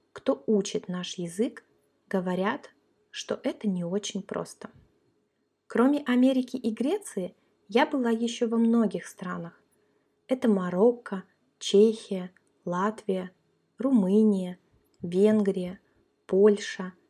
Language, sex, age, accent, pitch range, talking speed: Russian, female, 20-39, native, 190-235 Hz, 95 wpm